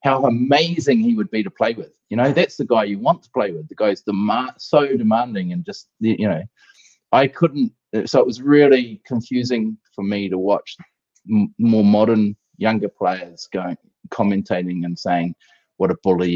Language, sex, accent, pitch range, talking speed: English, male, Australian, 95-140 Hz, 185 wpm